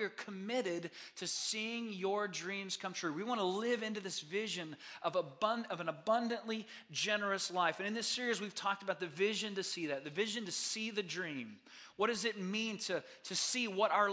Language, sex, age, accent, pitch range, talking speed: English, male, 30-49, American, 175-215 Hz, 210 wpm